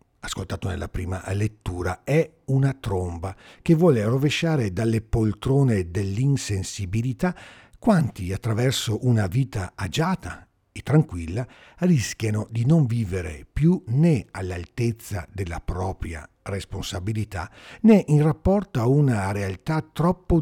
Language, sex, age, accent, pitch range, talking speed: Italian, male, 50-69, native, 95-130 Hz, 110 wpm